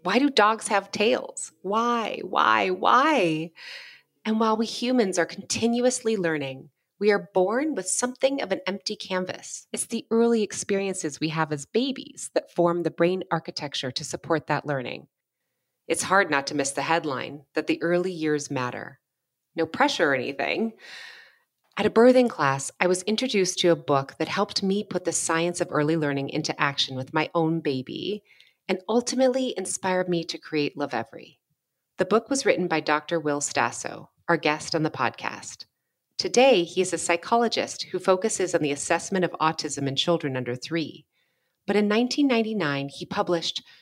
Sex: female